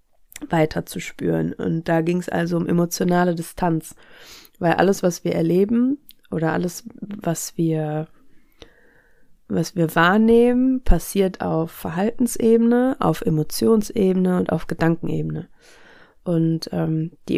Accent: German